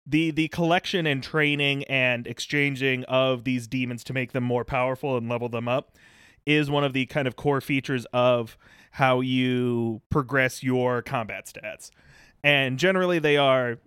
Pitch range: 125-145 Hz